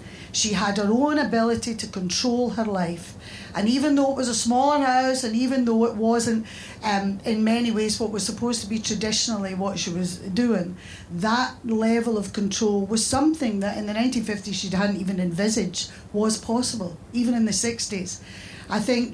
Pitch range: 195-240 Hz